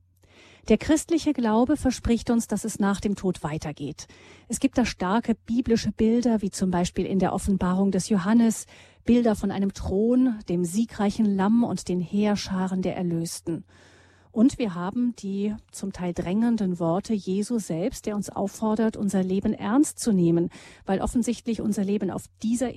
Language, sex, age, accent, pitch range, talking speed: German, female, 40-59, German, 180-235 Hz, 160 wpm